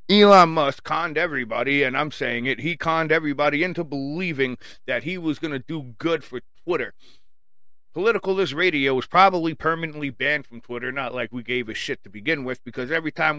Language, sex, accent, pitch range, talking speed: English, male, American, 130-165 Hz, 195 wpm